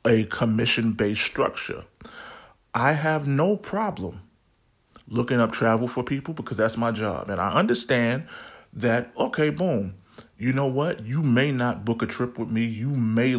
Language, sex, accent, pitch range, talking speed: English, male, American, 115-125 Hz, 155 wpm